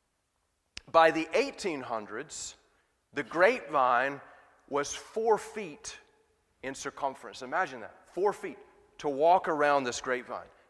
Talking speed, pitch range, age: 105 wpm, 120-170 Hz, 30-49